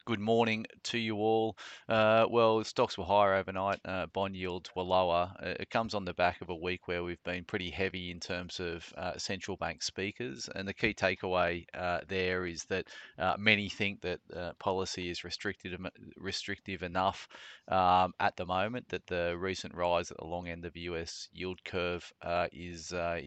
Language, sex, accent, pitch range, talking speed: English, male, Australian, 85-95 Hz, 195 wpm